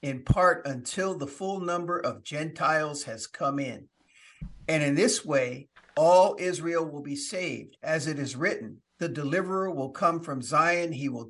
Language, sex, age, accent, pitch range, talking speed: English, male, 50-69, American, 135-175 Hz, 170 wpm